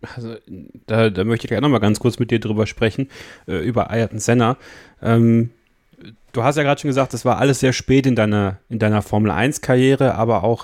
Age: 30-49